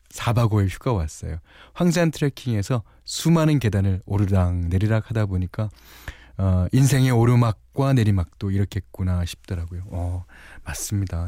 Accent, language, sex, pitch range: native, Korean, male, 95-145 Hz